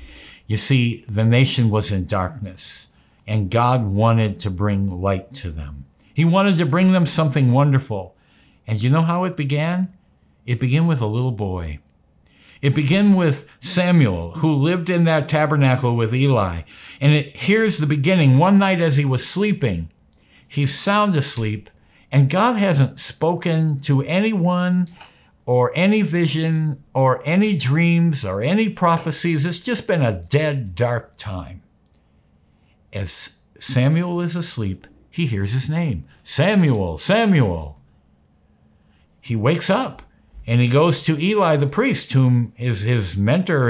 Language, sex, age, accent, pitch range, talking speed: English, male, 60-79, American, 100-165 Hz, 145 wpm